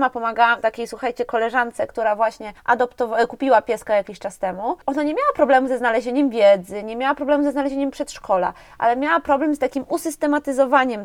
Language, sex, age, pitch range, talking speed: Polish, female, 20-39, 230-275 Hz, 175 wpm